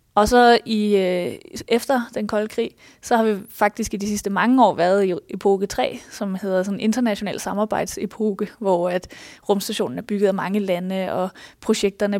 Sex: female